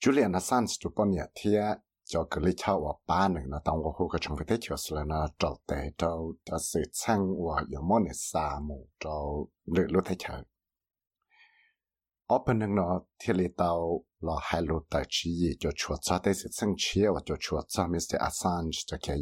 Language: English